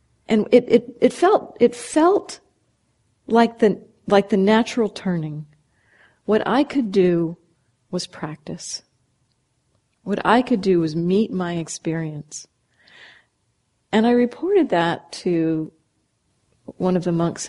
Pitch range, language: 165-215 Hz, English